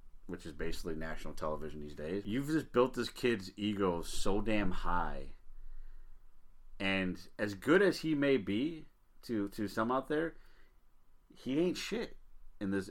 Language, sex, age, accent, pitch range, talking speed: English, male, 30-49, American, 95-150 Hz, 155 wpm